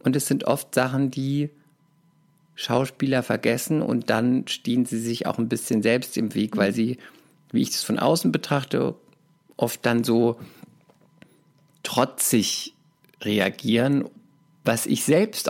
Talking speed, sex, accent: 135 wpm, male, German